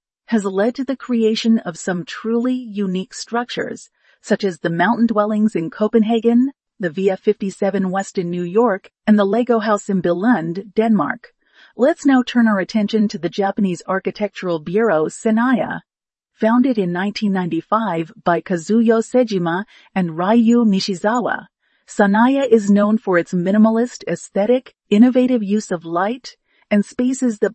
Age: 40-59